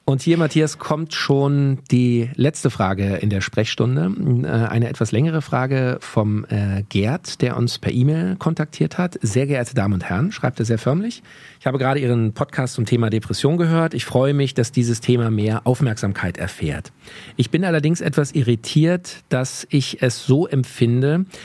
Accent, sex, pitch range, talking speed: German, male, 115-150 Hz, 170 wpm